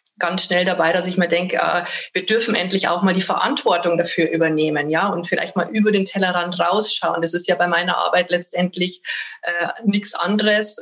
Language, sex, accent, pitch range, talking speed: German, female, German, 175-205 Hz, 190 wpm